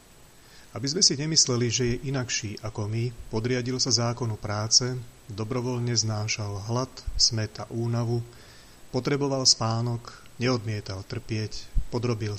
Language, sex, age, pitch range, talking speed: Slovak, male, 30-49, 110-130 Hz, 115 wpm